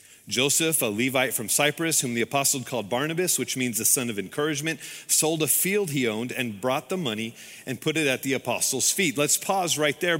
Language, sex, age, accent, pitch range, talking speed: English, male, 40-59, American, 130-165 Hz, 210 wpm